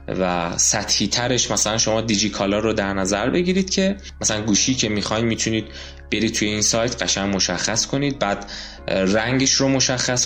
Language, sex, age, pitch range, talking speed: Persian, male, 20-39, 105-130 Hz, 160 wpm